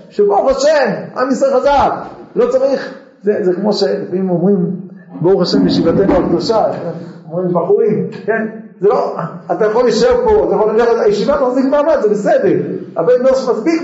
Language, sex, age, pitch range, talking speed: Hebrew, male, 50-69, 200-290 Hz, 145 wpm